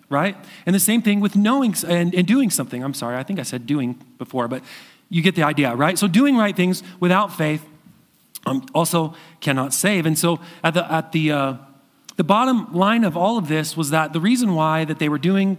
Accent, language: American, English